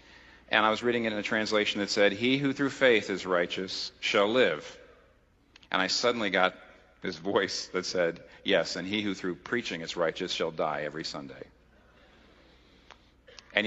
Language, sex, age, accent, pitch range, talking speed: English, male, 50-69, American, 100-165 Hz, 170 wpm